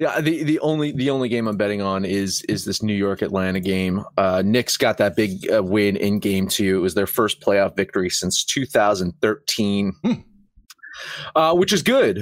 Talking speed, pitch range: 185 wpm, 115-155 Hz